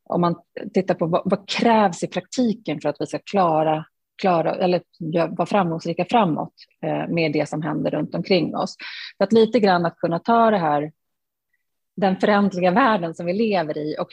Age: 30-49